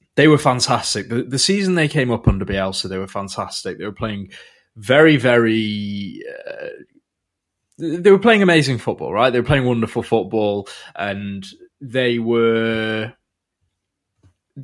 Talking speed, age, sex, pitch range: 140 wpm, 20-39, male, 100-145 Hz